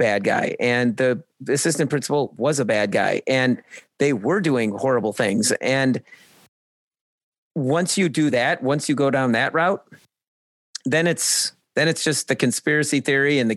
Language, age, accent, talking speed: English, 40-59, American, 165 wpm